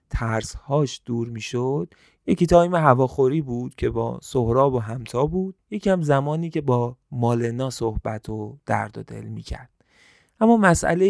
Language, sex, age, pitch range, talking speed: Persian, male, 30-49, 115-145 Hz, 150 wpm